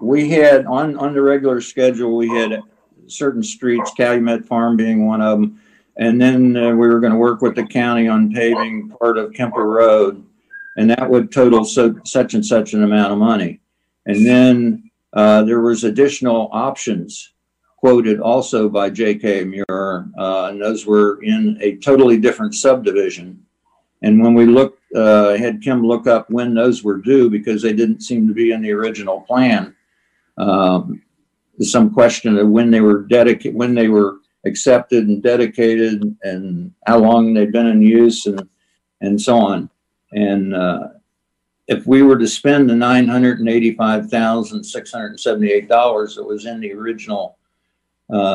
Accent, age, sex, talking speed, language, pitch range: American, 60-79, male, 160 wpm, English, 105-120 Hz